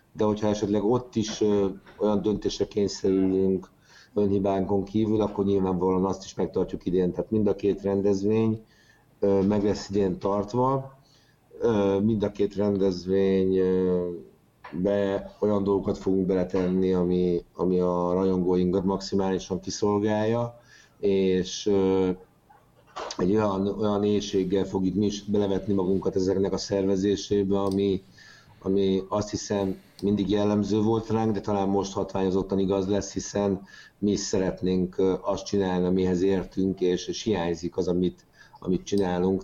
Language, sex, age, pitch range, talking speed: Hungarian, male, 50-69, 95-100 Hz, 125 wpm